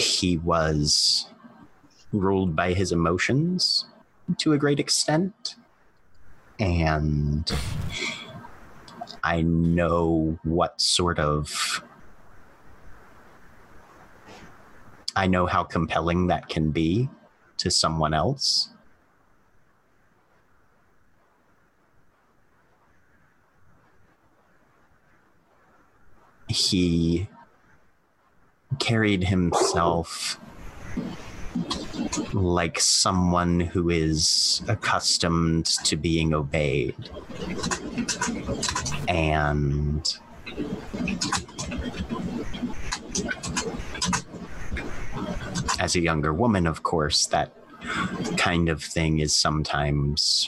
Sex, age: male, 30-49